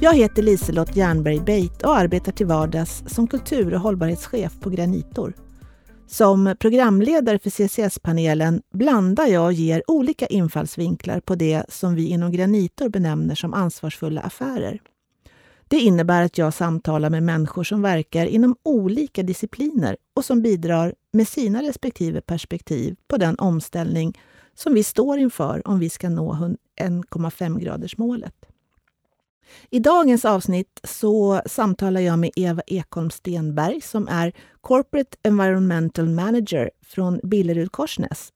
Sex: female